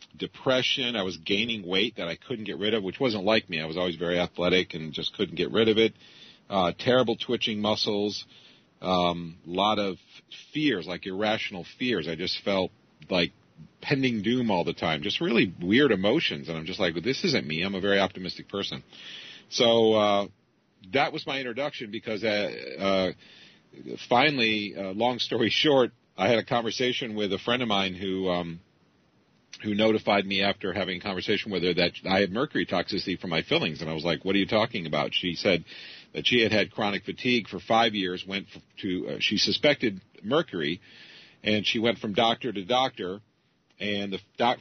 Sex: male